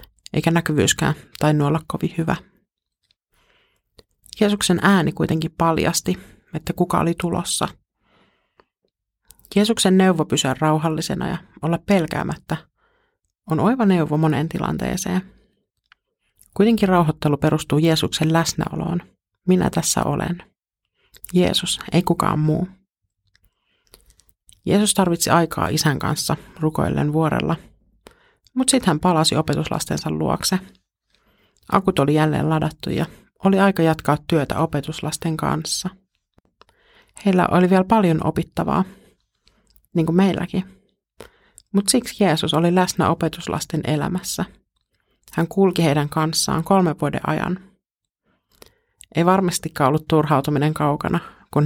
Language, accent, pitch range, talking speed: Finnish, native, 155-190 Hz, 105 wpm